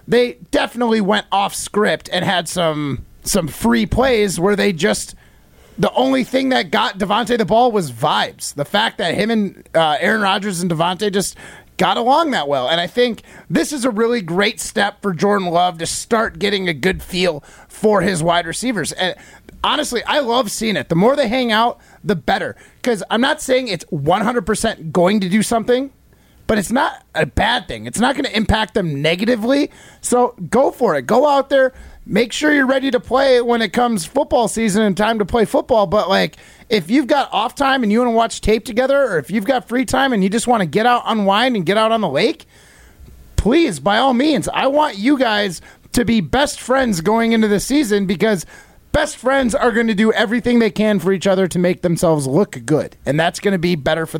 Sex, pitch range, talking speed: male, 185-250 Hz, 215 wpm